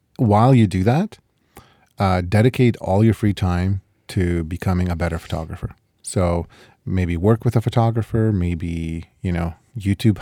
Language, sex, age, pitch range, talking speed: English, male, 30-49, 90-115 Hz, 145 wpm